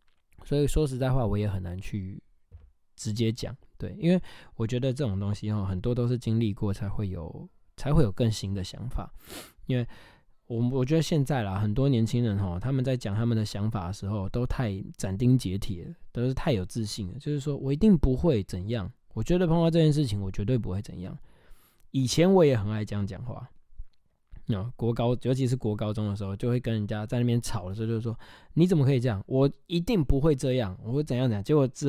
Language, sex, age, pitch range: Chinese, male, 20-39, 100-130 Hz